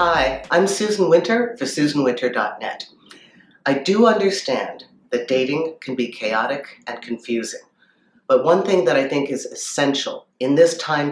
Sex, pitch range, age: female, 125-160 Hz, 50-69